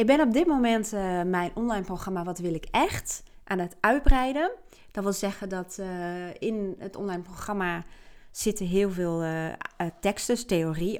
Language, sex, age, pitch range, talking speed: Dutch, female, 30-49, 175-230 Hz, 175 wpm